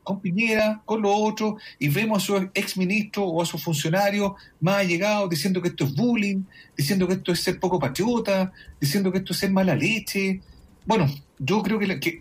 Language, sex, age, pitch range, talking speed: Spanish, male, 40-59, 150-195 Hz, 200 wpm